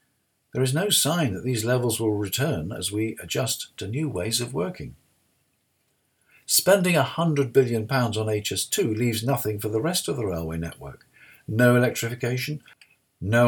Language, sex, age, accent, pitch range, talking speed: English, male, 50-69, British, 105-135 Hz, 150 wpm